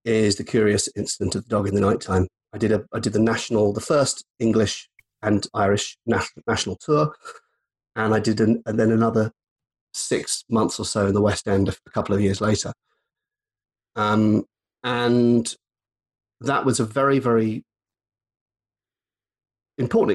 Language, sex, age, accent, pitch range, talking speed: English, male, 30-49, British, 100-115 Hz, 160 wpm